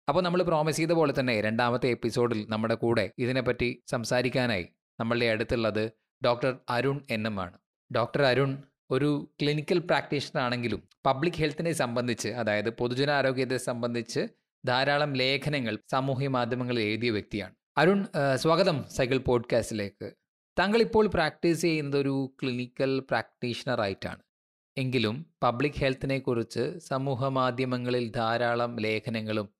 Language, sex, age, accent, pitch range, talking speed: Malayalam, male, 20-39, native, 120-145 Hz, 110 wpm